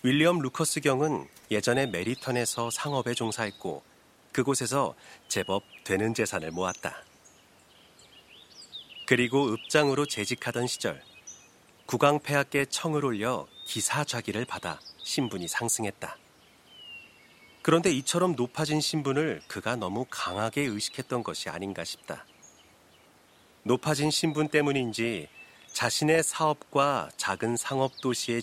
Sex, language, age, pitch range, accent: male, Korean, 40-59, 105-145 Hz, native